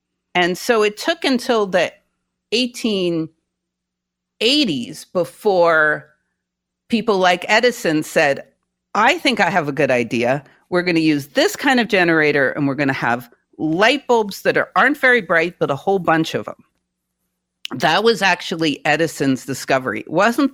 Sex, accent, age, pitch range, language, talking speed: female, American, 50-69, 150-230 Hz, English, 150 wpm